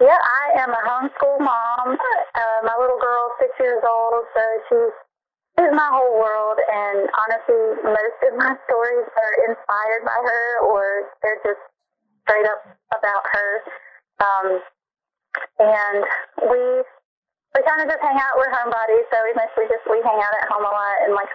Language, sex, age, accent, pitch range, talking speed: English, female, 20-39, American, 200-250 Hz, 170 wpm